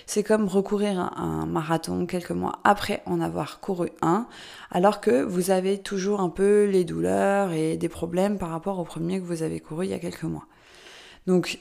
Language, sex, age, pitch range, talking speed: French, female, 20-39, 170-210 Hz, 200 wpm